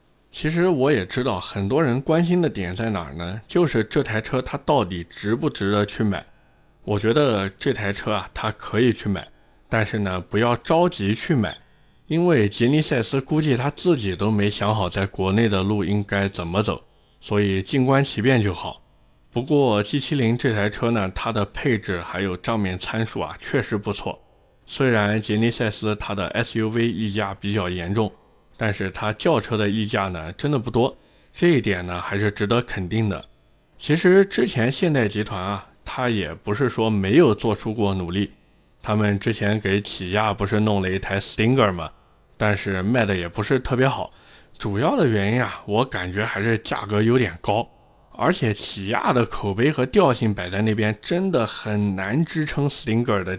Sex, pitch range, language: male, 100-125 Hz, Chinese